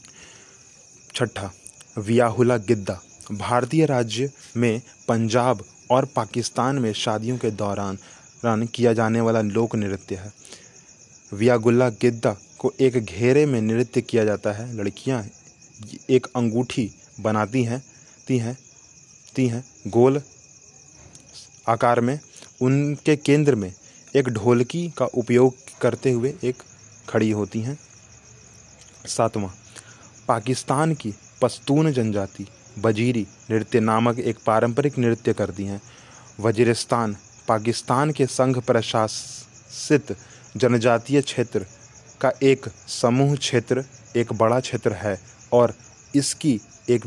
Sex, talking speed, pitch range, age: male, 110 wpm, 110-130 Hz, 30-49